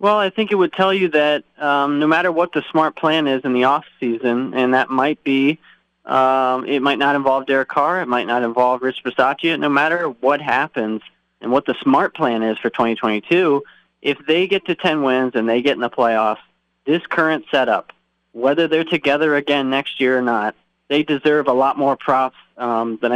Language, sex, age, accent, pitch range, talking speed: English, male, 20-39, American, 120-150 Hz, 205 wpm